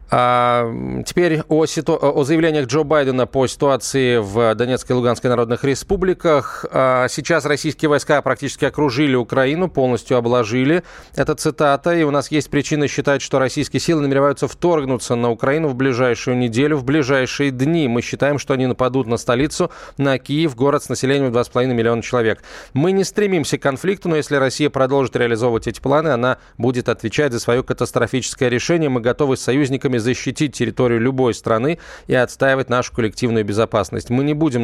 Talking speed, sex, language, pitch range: 160 wpm, male, Russian, 120-145 Hz